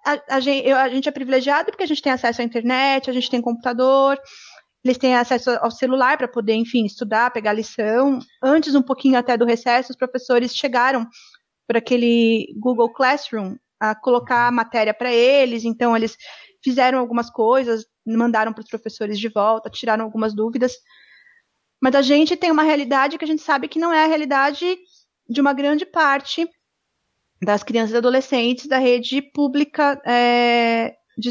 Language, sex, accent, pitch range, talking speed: Portuguese, female, Brazilian, 240-290 Hz, 165 wpm